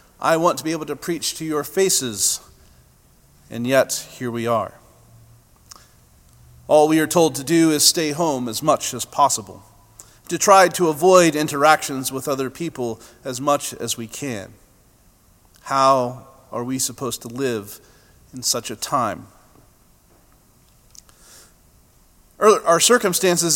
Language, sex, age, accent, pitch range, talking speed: English, male, 40-59, American, 130-160 Hz, 135 wpm